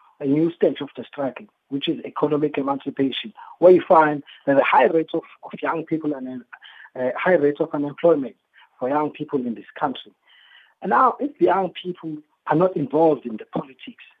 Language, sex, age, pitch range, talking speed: English, male, 50-69, 130-170 Hz, 195 wpm